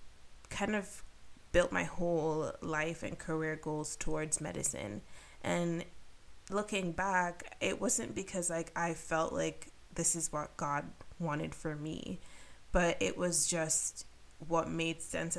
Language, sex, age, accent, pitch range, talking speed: English, female, 20-39, American, 155-180 Hz, 135 wpm